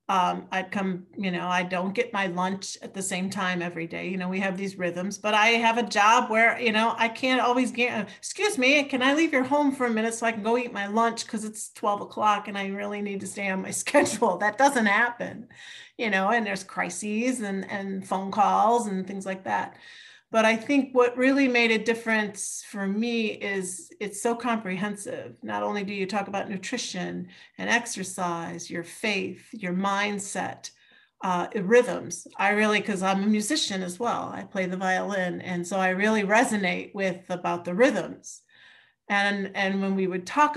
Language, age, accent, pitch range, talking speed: English, 40-59, American, 185-230 Hz, 200 wpm